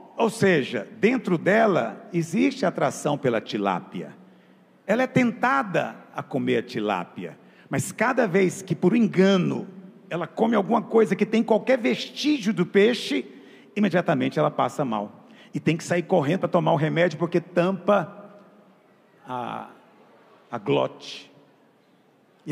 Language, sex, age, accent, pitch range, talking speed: Portuguese, male, 50-69, Brazilian, 140-195 Hz, 135 wpm